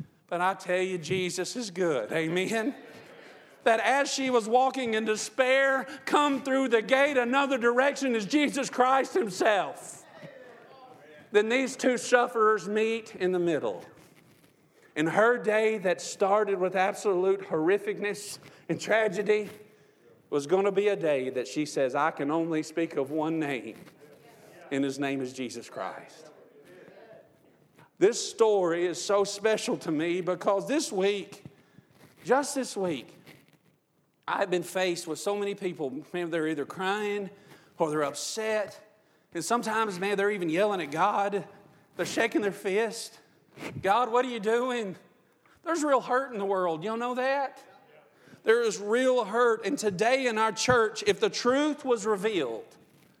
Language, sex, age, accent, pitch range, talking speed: English, male, 50-69, American, 180-245 Hz, 150 wpm